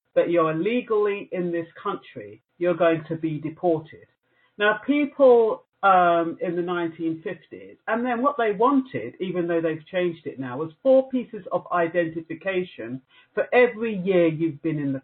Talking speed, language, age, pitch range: 160 wpm, English, 50-69, 155-195 Hz